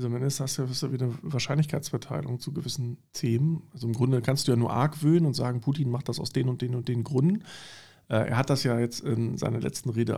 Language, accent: German, German